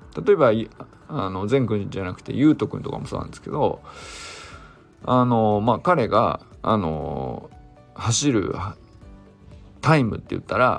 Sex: male